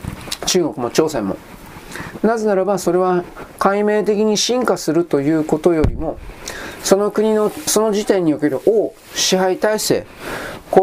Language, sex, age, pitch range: Japanese, male, 40-59, 155-210 Hz